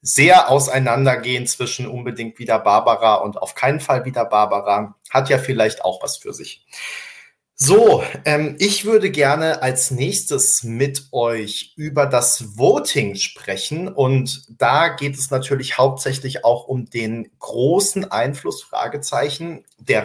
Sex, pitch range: male, 125-145 Hz